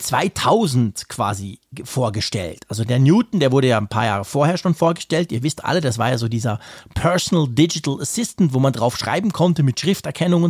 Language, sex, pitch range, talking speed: German, male, 125-170 Hz, 190 wpm